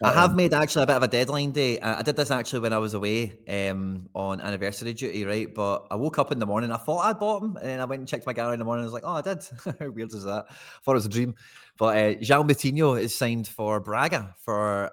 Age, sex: 20-39, male